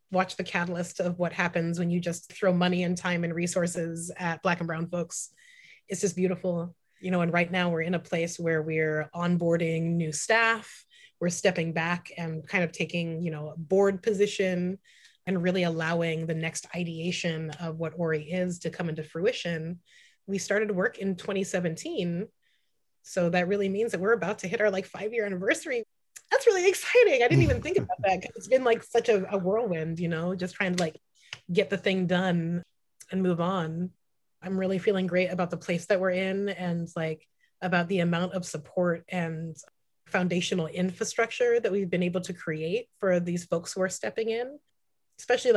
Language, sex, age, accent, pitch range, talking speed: English, female, 30-49, American, 170-195 Hz, 190 wpm